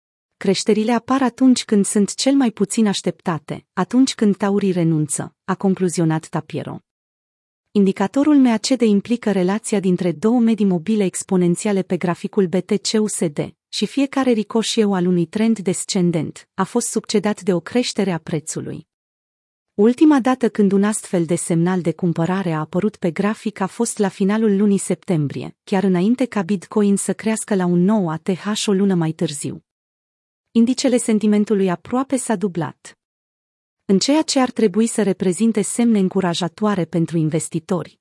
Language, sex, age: Romanian, female, 30-49